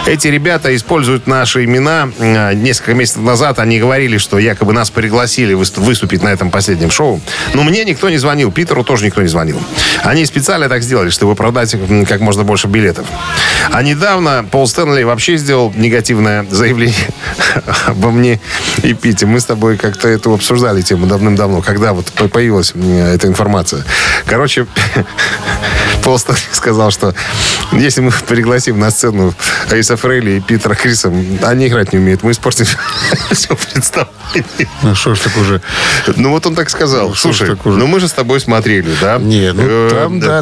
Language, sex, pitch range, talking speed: Russian, male, 105-140 Hz, 155 wpm